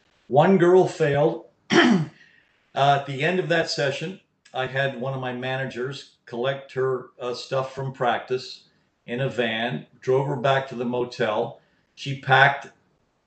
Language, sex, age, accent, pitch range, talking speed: English, male, 50-69, American, 120-140 Hz, 150 wpm